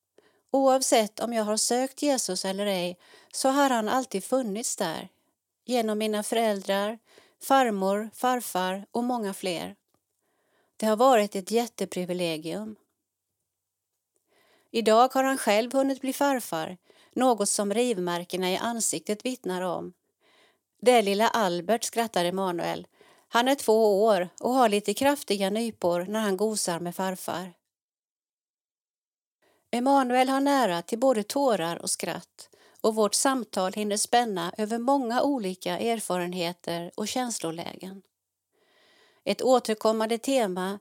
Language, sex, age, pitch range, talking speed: Swedish, female, 40-59, 190-250 Hz, 120 wpm